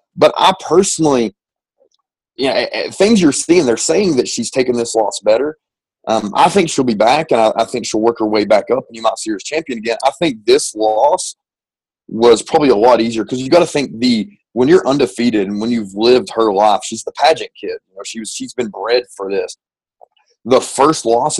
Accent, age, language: American, 30-49, English